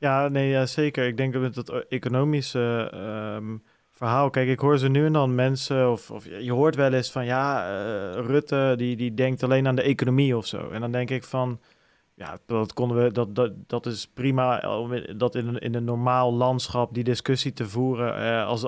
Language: Dutch